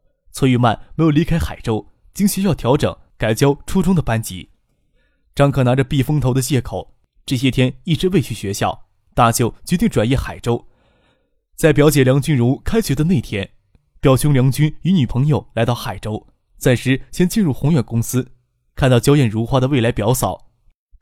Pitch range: 115-150 Hz